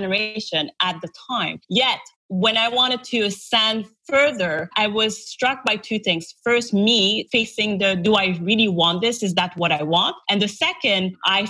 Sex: female